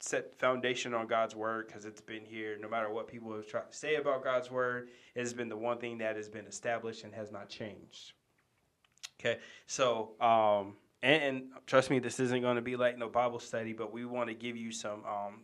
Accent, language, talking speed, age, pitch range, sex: American, English, 225 wpm, 20-39, 110-125 Hz, male